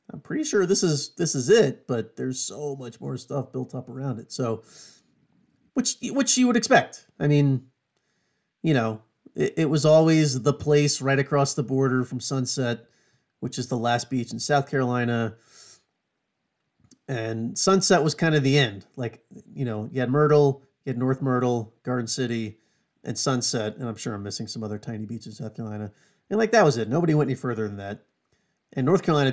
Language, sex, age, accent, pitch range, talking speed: English, male, 30-49, American, 115-150 Hz, 195 wpm